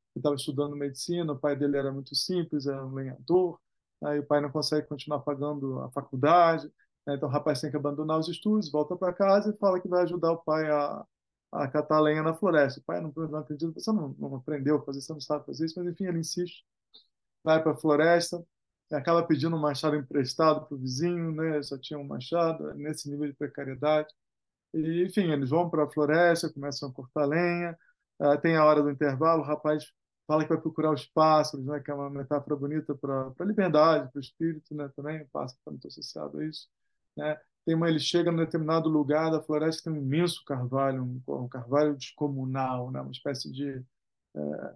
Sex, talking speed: male, 210 wpm